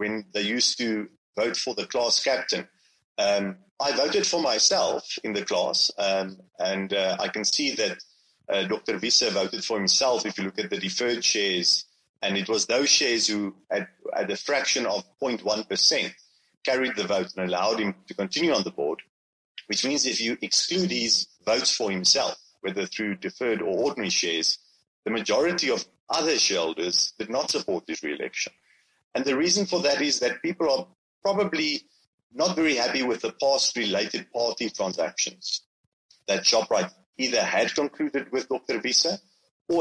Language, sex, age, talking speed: English, male, 30-49, 170 wpm